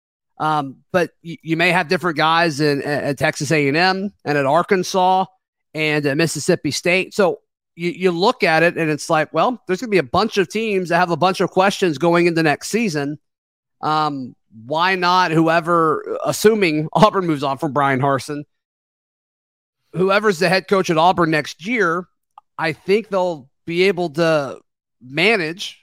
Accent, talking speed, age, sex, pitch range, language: American, 170 wpm, 30-49, male, 150-195 Hz, English